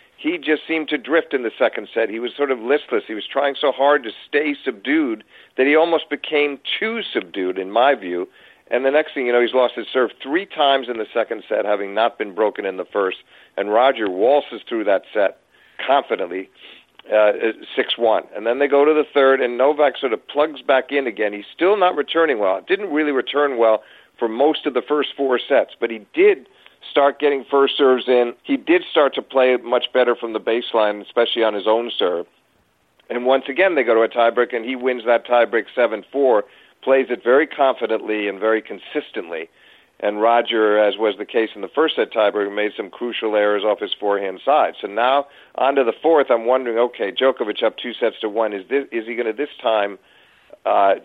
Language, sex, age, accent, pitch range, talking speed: English, male, 50-69, American, 110-145 Hz, 215 wpm